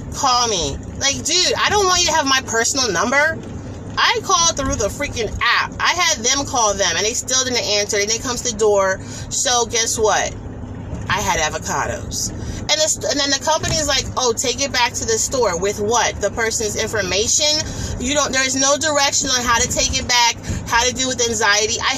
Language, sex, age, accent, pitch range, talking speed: English, female, 30-49, American, 215-290 Hz, 215 wpm